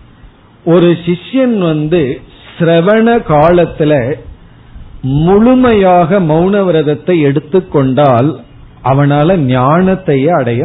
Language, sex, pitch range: Tamil, male, 135-185 Hz